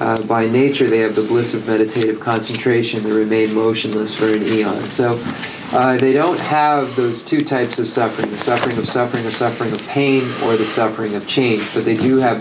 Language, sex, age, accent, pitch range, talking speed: English, male, 40-59, American, 110-130 Hz, 210 wpm